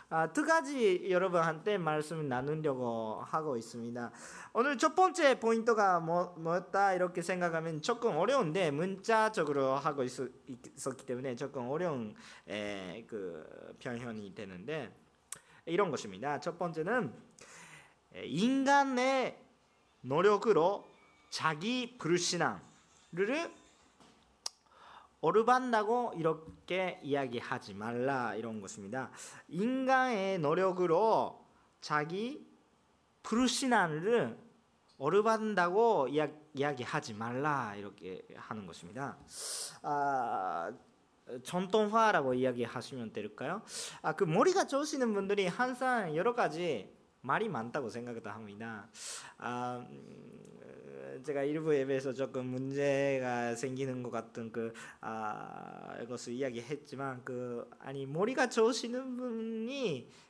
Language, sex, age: Korean, male, 40-59